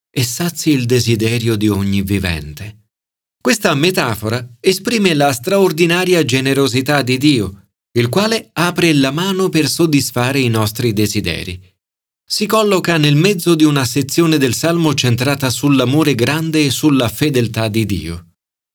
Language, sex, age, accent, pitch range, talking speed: Italian, male, 40-59, native, 105-155 Hz, 135 wpm